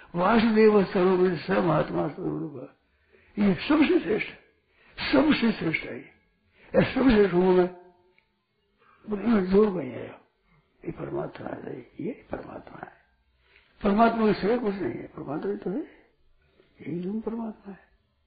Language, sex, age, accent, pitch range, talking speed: Hindi, male, 60-79, native, 180-235 Hz, 95 wpm